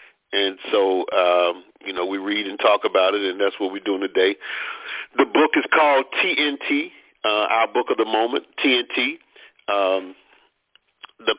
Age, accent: 40-59, American